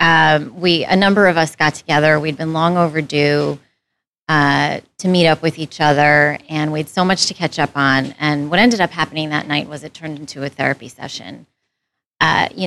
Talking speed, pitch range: 210 wpm, 150-180 Hz